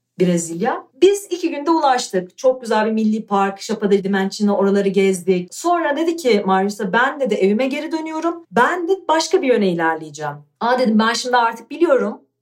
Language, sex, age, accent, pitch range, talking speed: Turkish, female, 40-59, native, 205-300 Hz, 170 wpm